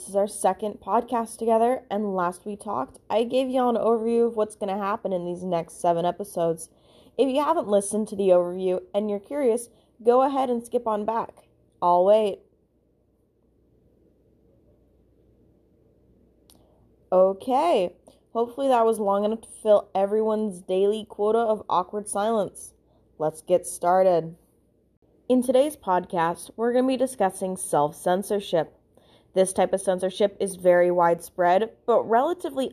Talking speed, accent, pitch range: 145 wpm, American, 185-235 Hz